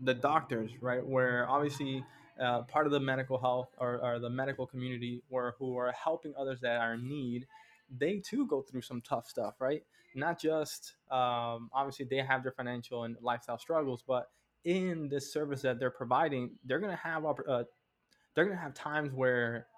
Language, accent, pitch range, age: English, American, 125-145 Hz, 20-39